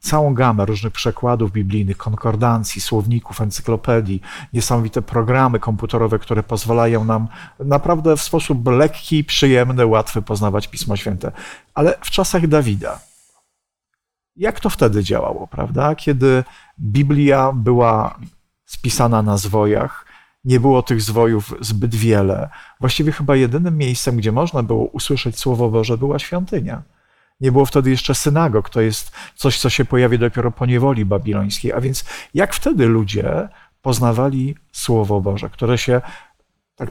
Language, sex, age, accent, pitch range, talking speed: Polish, male, 40-59, native, 110-140 Hz, 135 wpm